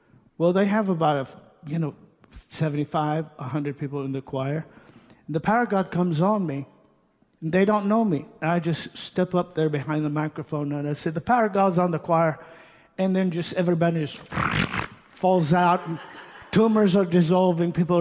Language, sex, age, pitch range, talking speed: English, male, 50-69, 165-200 Hz, 185 wpm